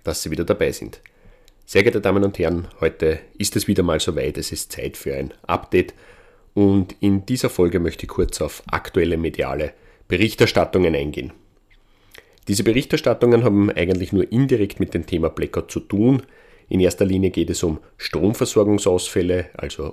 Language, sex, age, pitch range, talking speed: German, male, 30-49, 90-100 Hz, 165 wpm